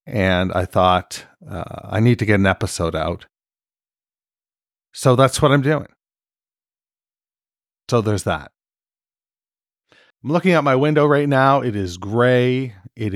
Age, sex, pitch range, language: 40-59, male, 95-125 Hz, English